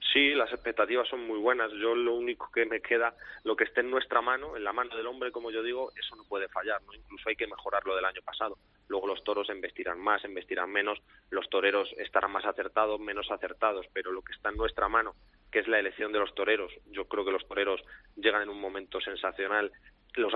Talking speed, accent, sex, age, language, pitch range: 230 wpm, Spanish, male, 20-39, Spanish, 105-135 Hz